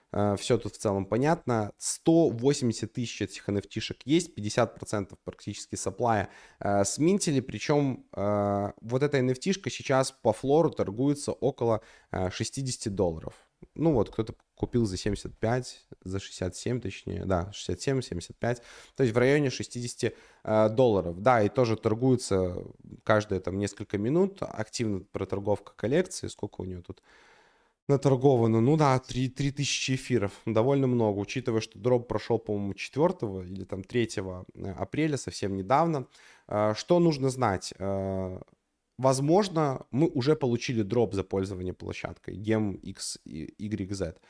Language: Russian